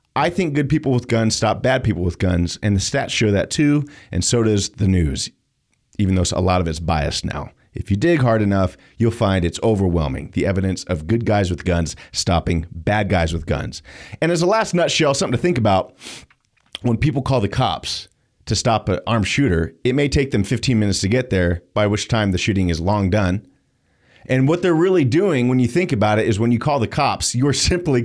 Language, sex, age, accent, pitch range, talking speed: English, male, 40-59, American, 95-135 Hz, 225 wpm